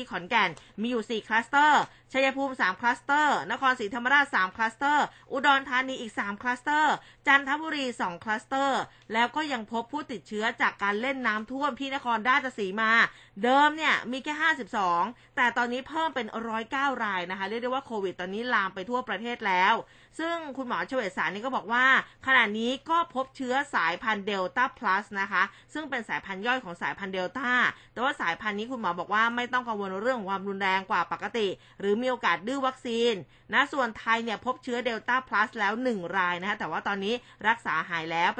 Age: 20-39